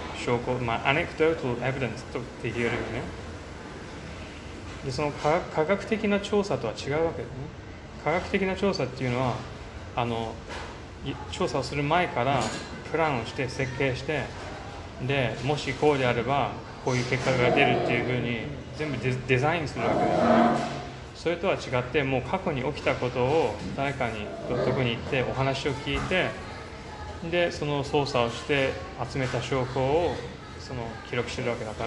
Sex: male